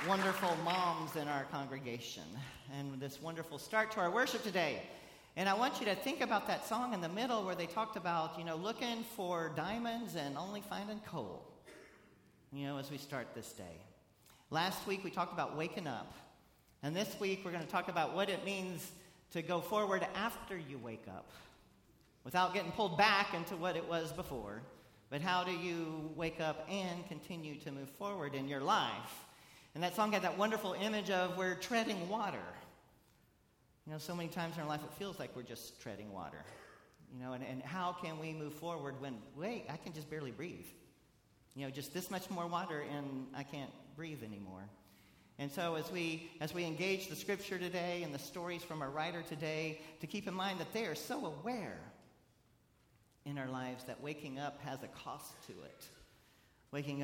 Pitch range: 140-185 Hz